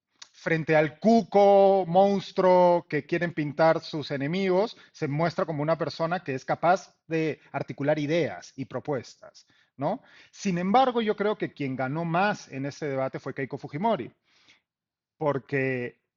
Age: 30-49